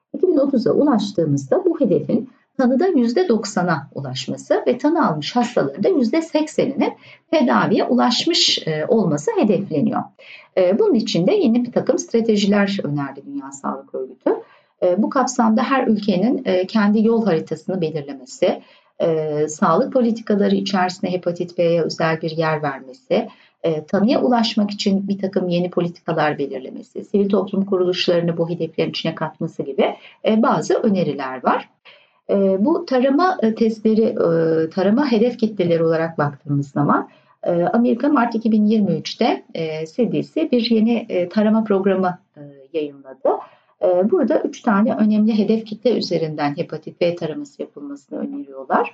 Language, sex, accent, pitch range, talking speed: Turkish, female, native, 165-235 Hz, 125 wpm